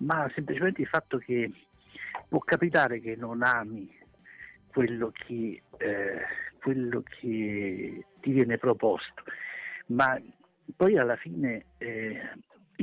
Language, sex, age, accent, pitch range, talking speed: Italian, male, 60-79, native, 115-155 Hz, 110 wpm